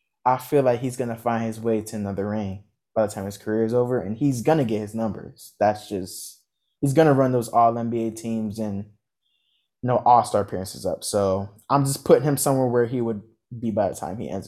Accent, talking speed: American, 230 wpm